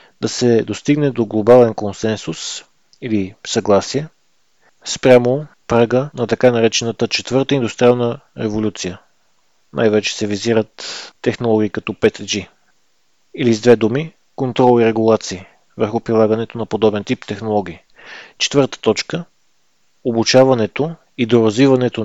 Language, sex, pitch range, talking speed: Bulgarian, male, 110-125 Hz, 115 wpm